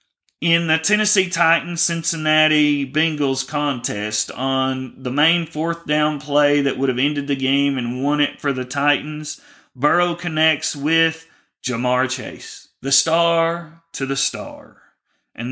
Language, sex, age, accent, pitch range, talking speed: English, male, 30-49, American, 130-160 Hz, 135 wpm